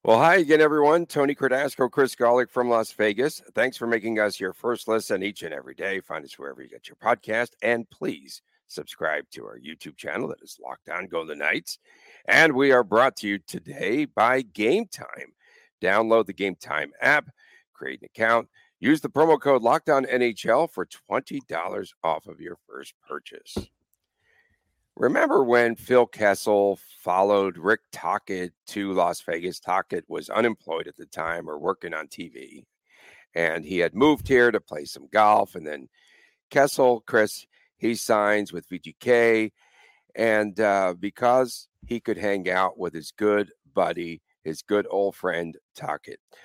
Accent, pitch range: American, 100-130 Hz